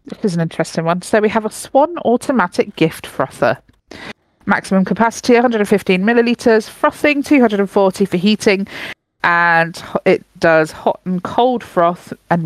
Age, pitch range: 40-59, 170-235 Hz